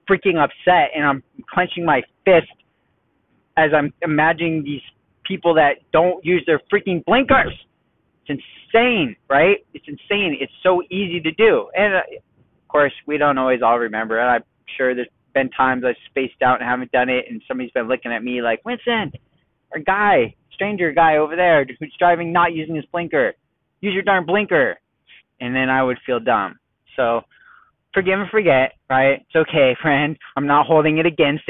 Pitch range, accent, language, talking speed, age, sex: 130-170 Hz, American, English, 175 wpm, 20-39, male